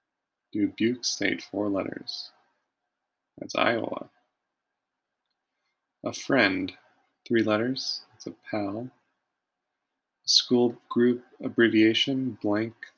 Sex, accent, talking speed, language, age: male, American, 80 wpm, English, 30-49